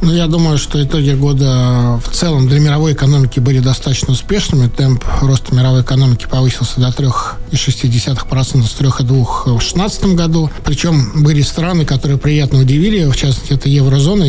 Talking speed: 145 wpm